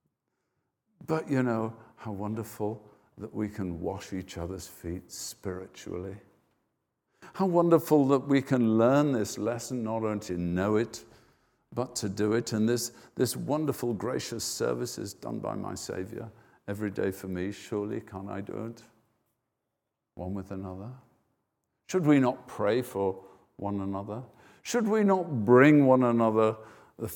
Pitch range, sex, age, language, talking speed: 95-125 Hz, male, 50-69, English, 150 wpm